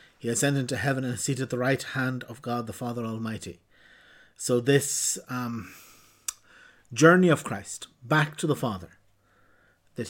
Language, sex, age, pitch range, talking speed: English, male, 50-69, 115-145 Hz, 160 wpm